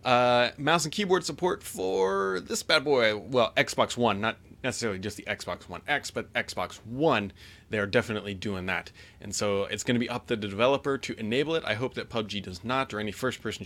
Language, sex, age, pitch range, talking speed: English, male, 30-49, 100-140 Hz, 215 wpm